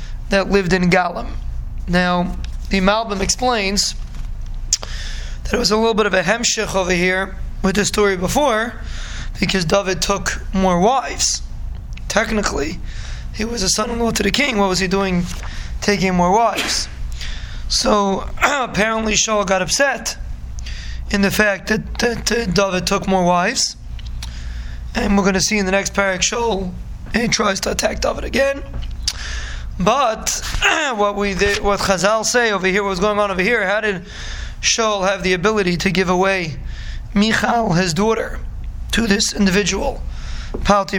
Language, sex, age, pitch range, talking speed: English, male, 20-39, 185-210 Hz, 150 wpm